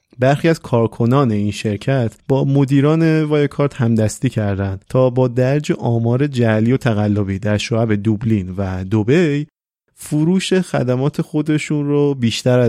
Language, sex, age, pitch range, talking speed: Persian, male, 30-49, 110-140 Hz, 130 wpm